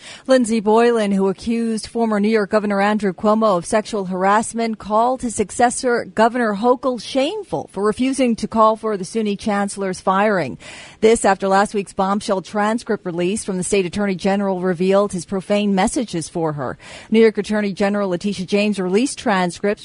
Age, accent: 40-59, American